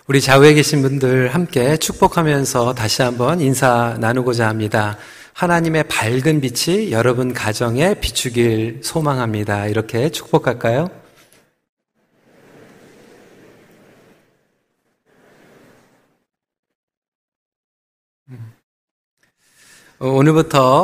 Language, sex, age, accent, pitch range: Korean, male, 40-59, native, 115-150 Hz